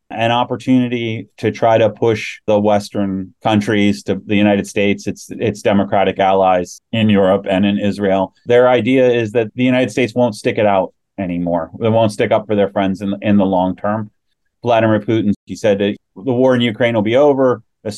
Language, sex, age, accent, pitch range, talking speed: English, male, 30-49, American, 100-120 Hz, 195 wpm